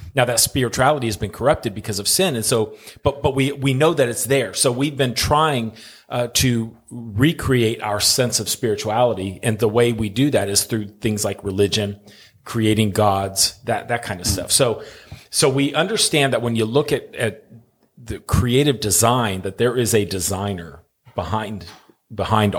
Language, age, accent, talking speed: English, 40-59, American, 180 wpm